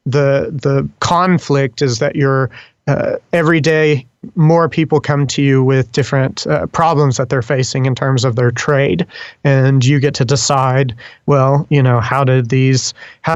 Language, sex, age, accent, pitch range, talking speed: English, male, 30-49, American, 130-150 Hz, 170 wpm